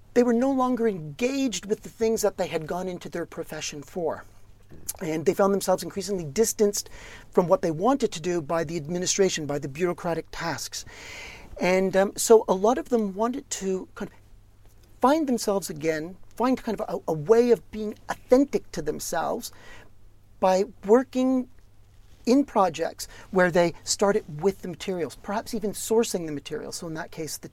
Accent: American